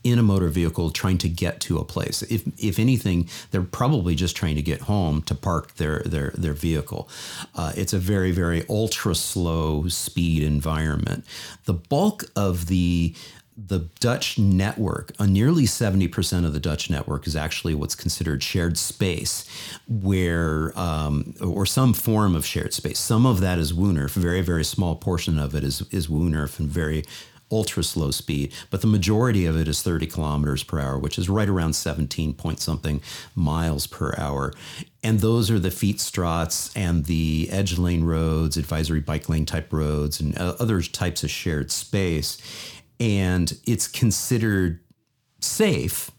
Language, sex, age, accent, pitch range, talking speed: English, male, 50-69, American, 80-100 Hz, 170 wpm